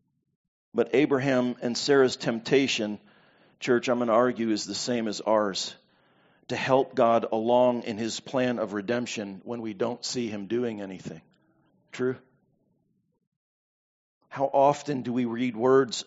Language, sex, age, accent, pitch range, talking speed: English, male, 50-69, American, 120-140 Hz, 140 wpm